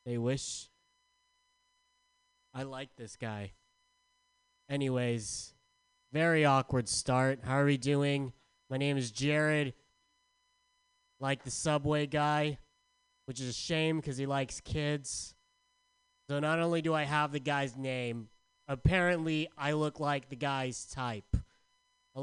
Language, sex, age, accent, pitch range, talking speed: English, male, 20-39, American, 130-200 Hz, 125 wpm